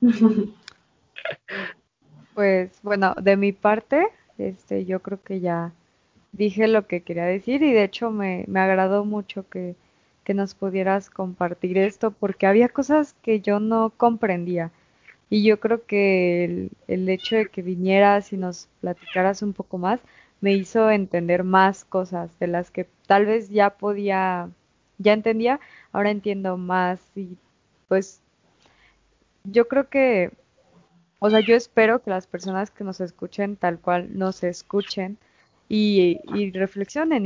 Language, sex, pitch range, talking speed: Spanish, female, 185-215 Hz, 145 wpm